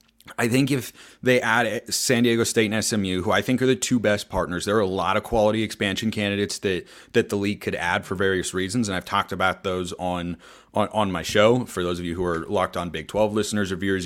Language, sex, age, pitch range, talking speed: English, male, 30-49, 90-110 Hz, 245 wpm